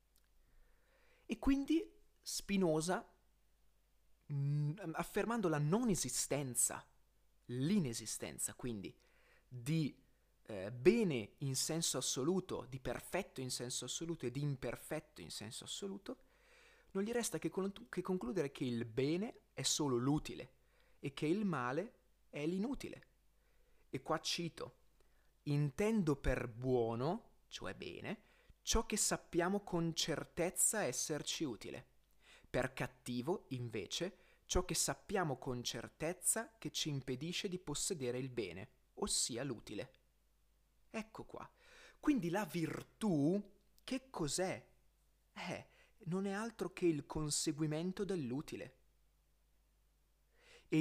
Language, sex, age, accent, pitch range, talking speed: Italian, male, 30-49, native, 135-195 Hz, 110 wpm